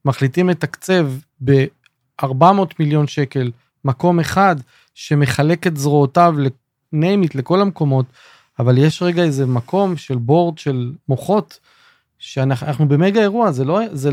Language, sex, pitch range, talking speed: Hebrew, male, 135-185 Hz, 120 wpm